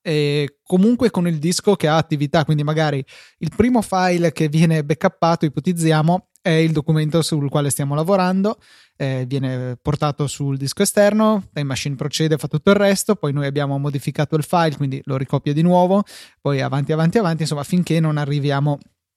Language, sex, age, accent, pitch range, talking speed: Italian, male, 20-39, native, 145-180 Hz, 175 wpm